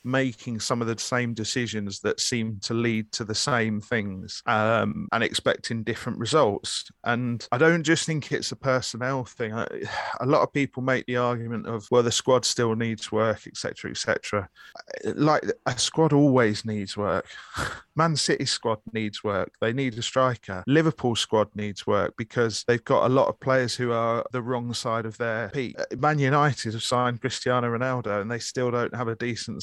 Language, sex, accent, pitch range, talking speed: English, male, British, 110-130 Hz, 185 wpm